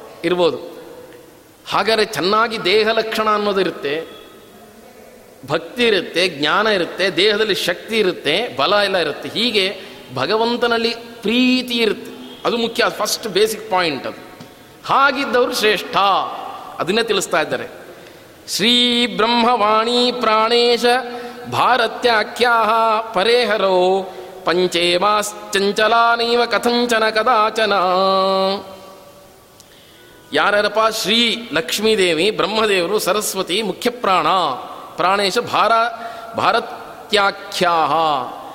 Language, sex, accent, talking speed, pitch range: Kannada, male, native, 70 wpm, 210-245 Hz